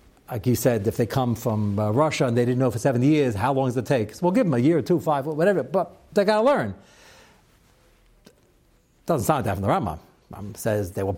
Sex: male